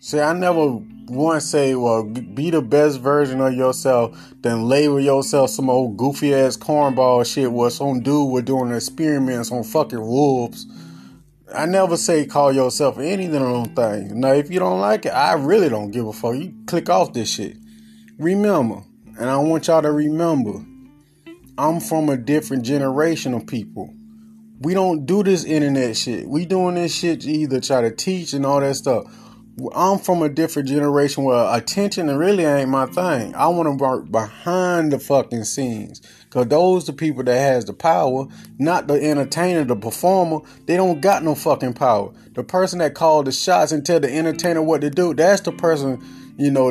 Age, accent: 30-49, American